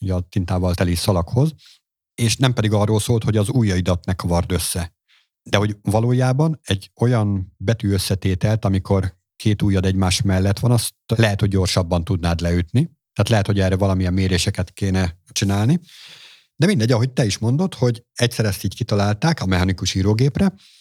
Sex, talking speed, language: male, 165 wpm, Hungarian